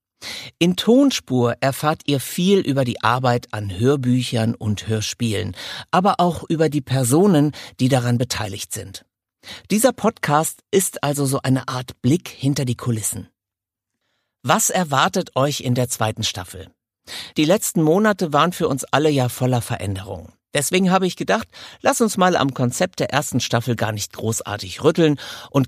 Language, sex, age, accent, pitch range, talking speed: German, male, 50-69, German, 115-160 Hz, 155 wpm